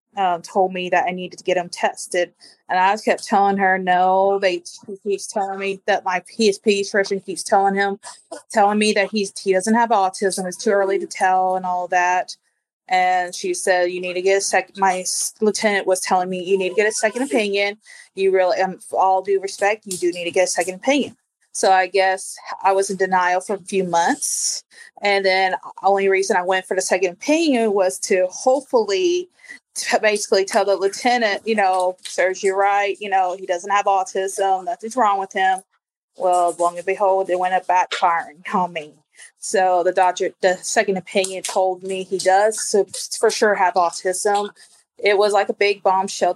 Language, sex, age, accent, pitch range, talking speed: English, female, 30-49, American, 185-210 Hz, 200 wpm